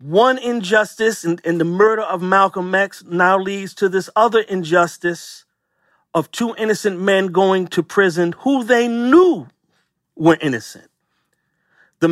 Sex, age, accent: male, 40-59, American